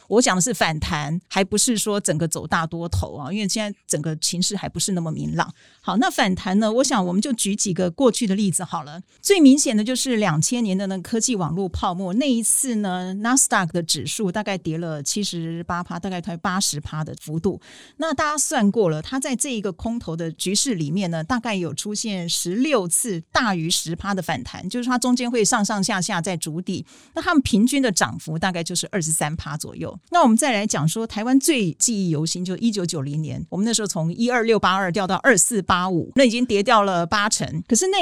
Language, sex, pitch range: Chinese, female, 170-230 Hz